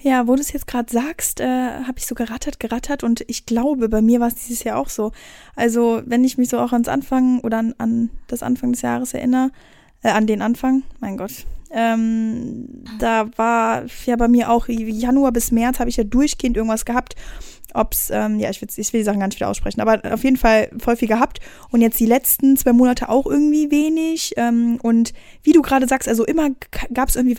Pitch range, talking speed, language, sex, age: 210-245 Hz, 225 wpm, German, female, 10-29